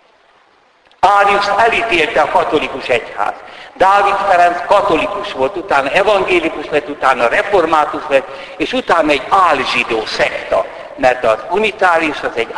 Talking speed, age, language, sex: 120 wpm, 60-79, Hungarian, male